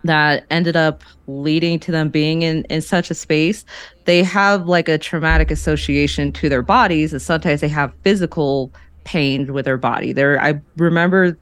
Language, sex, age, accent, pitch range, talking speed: English, female, 20-39, American, 140-165 Hz, 175 wpm